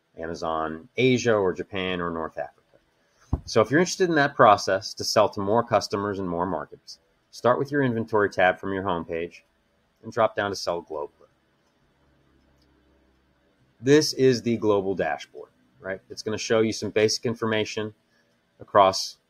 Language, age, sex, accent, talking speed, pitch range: English, 30-49, male, American, 155 wpm, 80-105 Hz